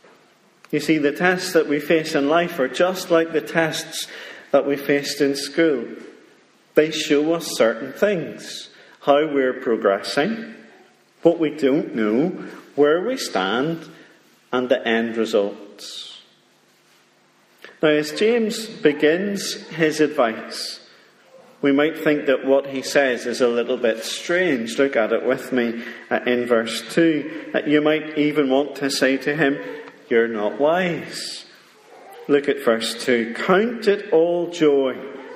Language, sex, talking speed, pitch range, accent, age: English, male, 140 wpm, 120-175 Hz, British, 40-59